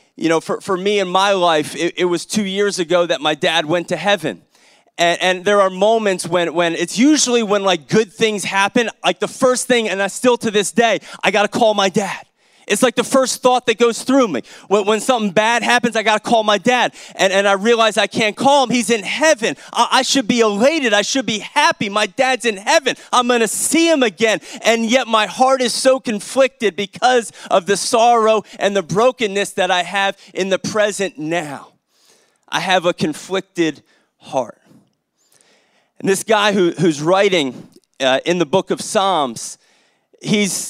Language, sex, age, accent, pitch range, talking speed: English, male, 30-49, American, 195-245 Hz, 205 wpm